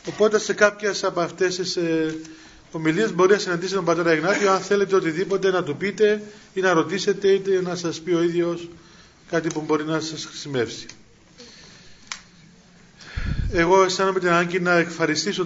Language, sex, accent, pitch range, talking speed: Greek, male, native, 150-180 Hz, 160 wpm